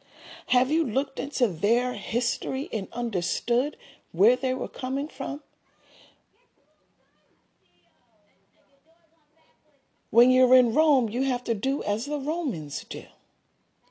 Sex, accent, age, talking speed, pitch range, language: female, American, 40-59, 110 wpm, 210-300 Hz, English